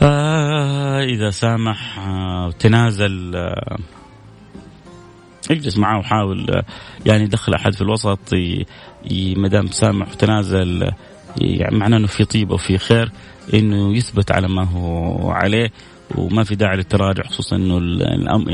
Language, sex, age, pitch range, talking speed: Arabic, male, 30-49, 100-130 Hz, 130 wpm